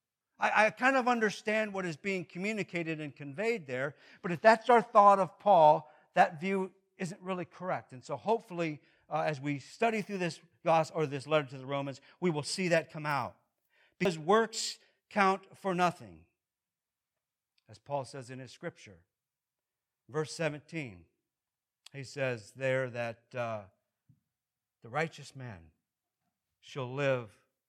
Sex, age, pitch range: male, 60-79, 135-175 Hz